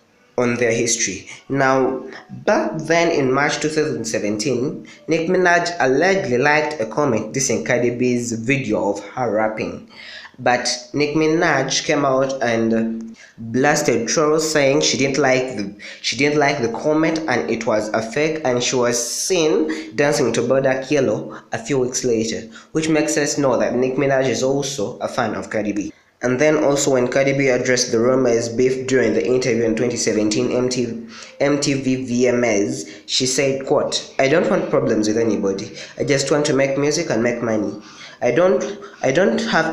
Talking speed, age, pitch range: 170 wpm, 20-39, 115-145 Hz